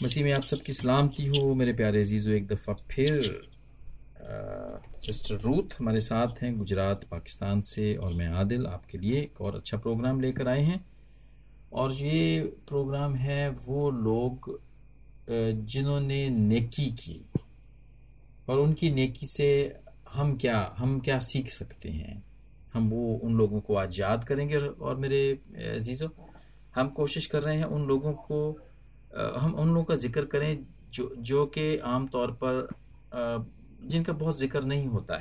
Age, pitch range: 40-59, 110-140 Hz